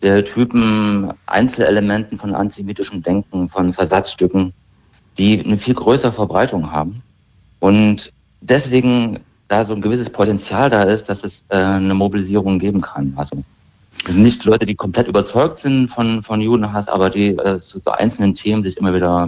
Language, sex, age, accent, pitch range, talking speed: German, male, 50-69, German, 90-110 Hz, 160 wpm